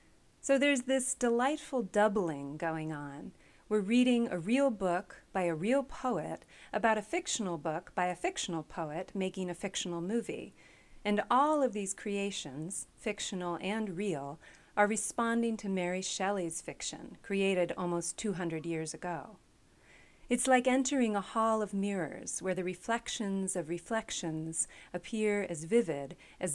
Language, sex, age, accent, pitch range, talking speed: English, female, 40-59, American, 170-230 Hz, 140 wpm